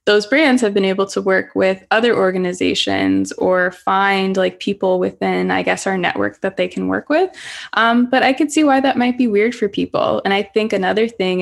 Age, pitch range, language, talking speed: 20-39, 180-210 Hz, English, 215 wpm